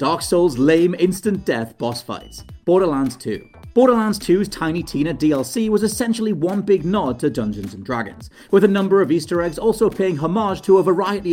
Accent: British